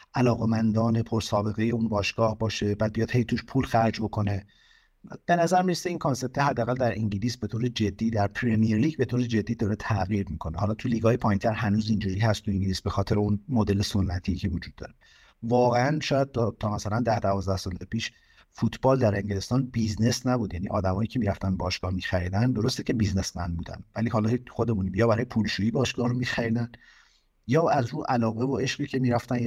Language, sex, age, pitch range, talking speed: Persian, male, 50-69, 100-120 Hz, 190 wpm